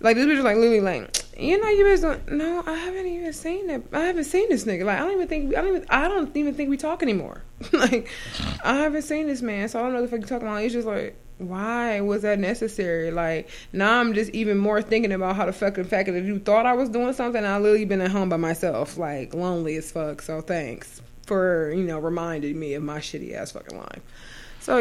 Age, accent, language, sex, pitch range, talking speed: 20-39, American, English, female, 160-235 Hz, 255 wpm